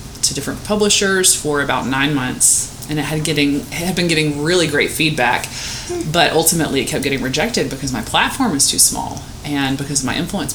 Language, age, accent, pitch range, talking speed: English, 20-39, American, 130-155 Hz, 195 wpm